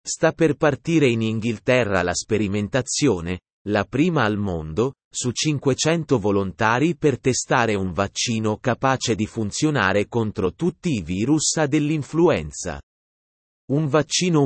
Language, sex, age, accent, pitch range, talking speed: Italian, male, 30-49, native, 105-145 Hz, 115 wpm